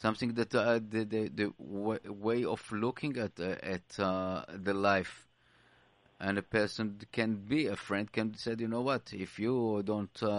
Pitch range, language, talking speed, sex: 105-115 Hz, English, 180 wpm, male